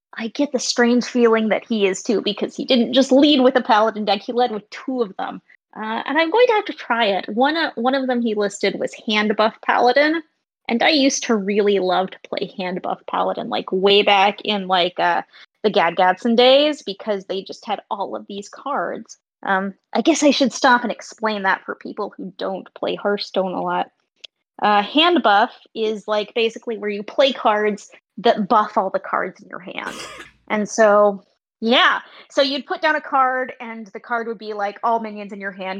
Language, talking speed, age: English, 210 wpm, 20-39